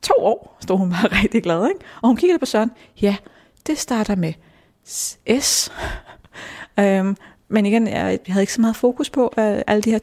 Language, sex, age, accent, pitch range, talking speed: Danish, female, 30-49, native, 180-220 Hz, 180 wpm